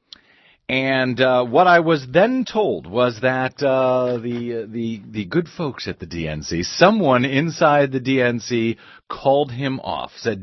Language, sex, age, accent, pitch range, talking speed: English, male, 40-59, American, 125-160 Hz, 150 wpm